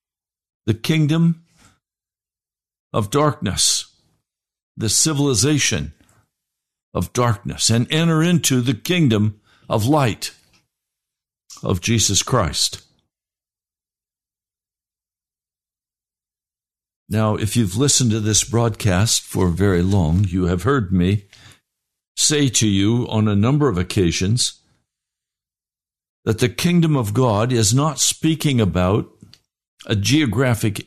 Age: 60-79